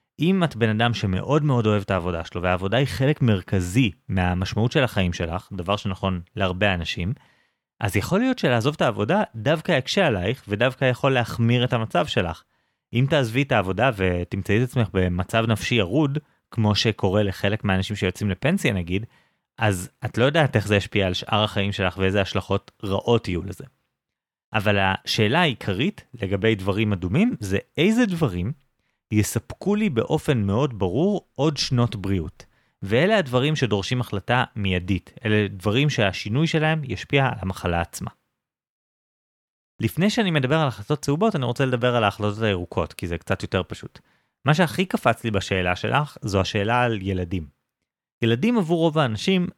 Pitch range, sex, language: 95-135 Hz, male, Hebrew